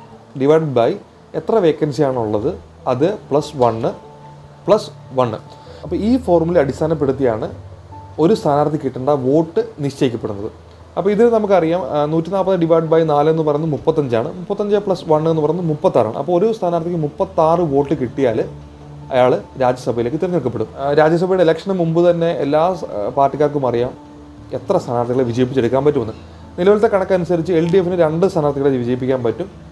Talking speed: 130 wpm